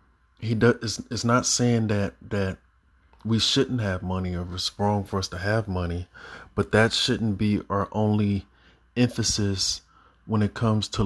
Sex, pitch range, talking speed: male, 95-110 Hz, 165 wpm